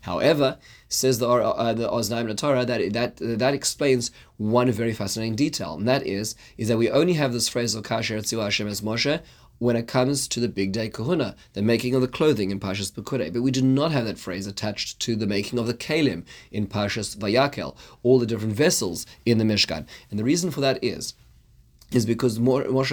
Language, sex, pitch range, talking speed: English, male, 105-125 Hz, 195 wpm